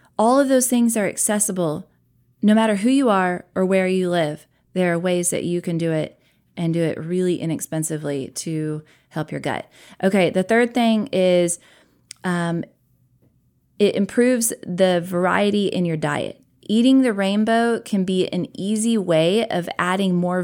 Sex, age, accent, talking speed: female, 30-49, American, 165 wpm